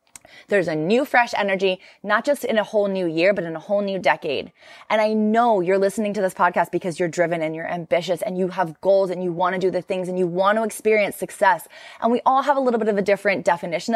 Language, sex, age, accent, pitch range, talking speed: English, female, 20-39, American, 185-240 Hz, 260 wpm